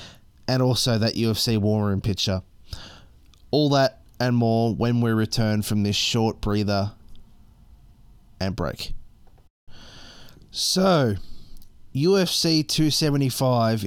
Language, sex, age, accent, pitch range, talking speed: English, male, 20-39, Australian, 100-125 Hz, 100 wpm